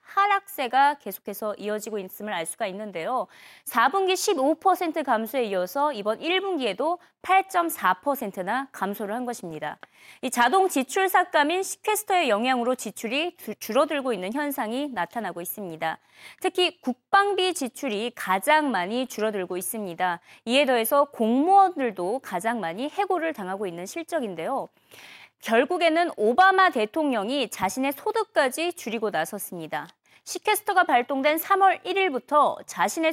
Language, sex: Korean, female